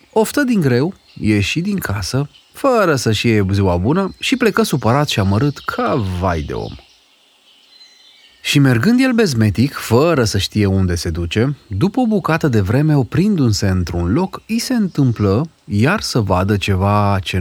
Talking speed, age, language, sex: 160 wpm, 30-49, Romanian, male